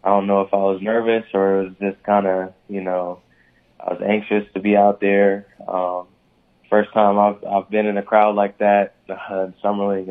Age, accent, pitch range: 20-39, American, 90-100 Hz